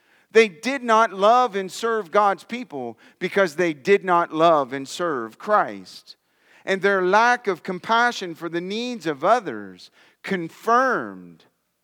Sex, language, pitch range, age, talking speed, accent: male, English, 160-210 Hz, 40-59, 135 wpm, American